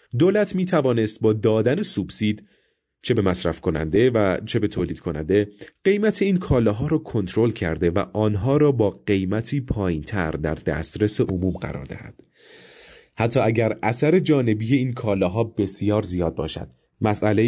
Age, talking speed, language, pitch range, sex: 30-49, 150 wpm, Persian, 95-130 Hz, male